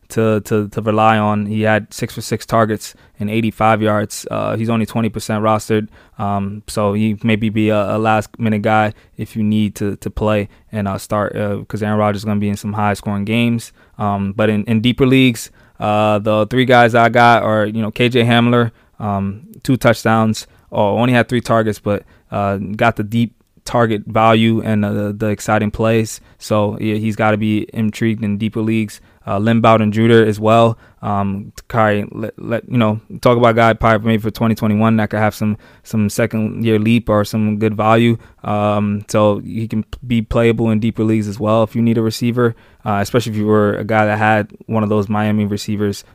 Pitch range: 105-115 Hz